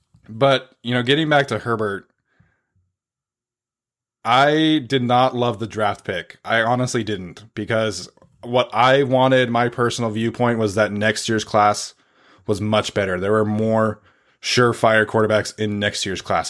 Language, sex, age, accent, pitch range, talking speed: English, male, 20-39, American, 105-120 Hz, 150 wpm